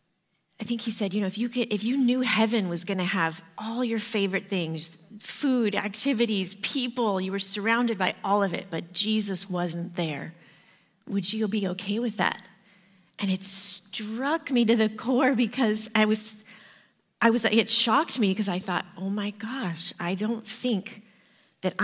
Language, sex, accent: English, female, American